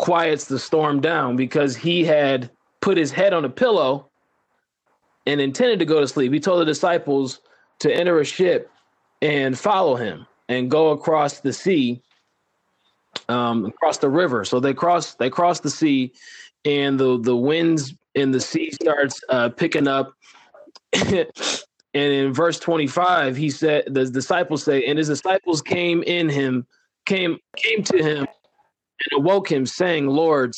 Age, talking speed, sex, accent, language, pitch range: 20-39, 160 wpm, male, American, English, 135-170 Hz